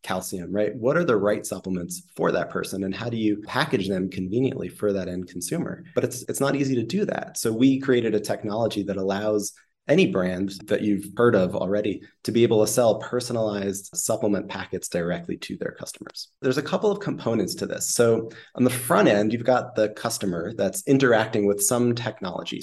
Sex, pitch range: male, 100-125 Hz